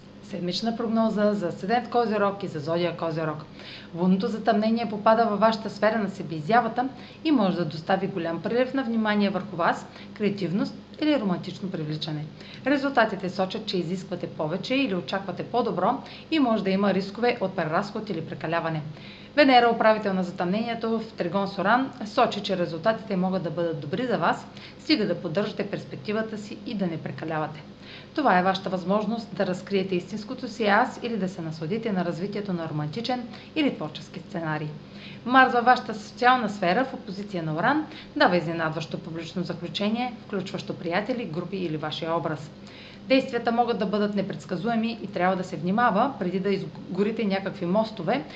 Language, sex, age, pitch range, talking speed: Bulgarian, female, 30-49, 175-225 Hz, 160 wpm